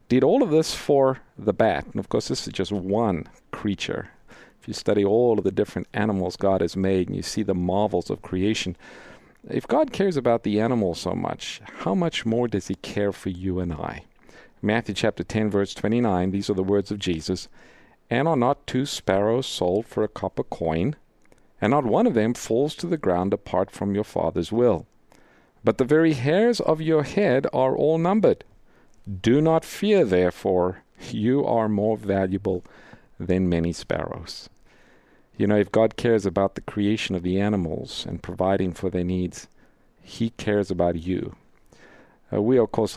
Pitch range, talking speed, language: 95-115 Hz, 185 wpm, English